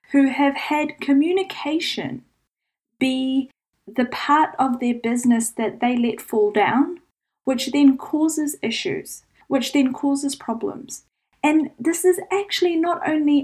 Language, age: English, 10-29